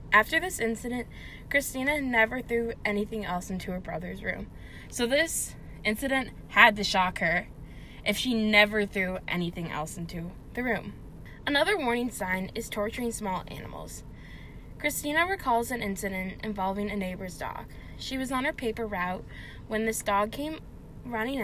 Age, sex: 10-29, female